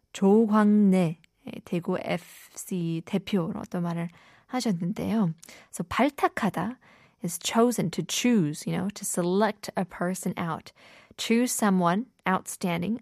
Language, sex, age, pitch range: Korean, female, 20-39, 175-225 Hz